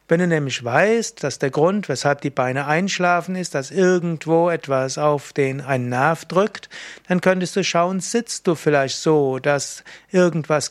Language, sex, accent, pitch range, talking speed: German, male, German, 140-185 Hz, 170 wpm